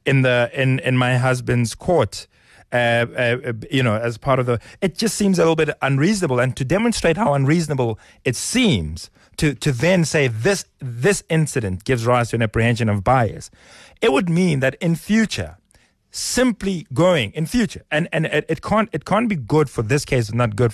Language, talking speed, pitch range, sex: English, 195 wpm, 115-150 Hz, male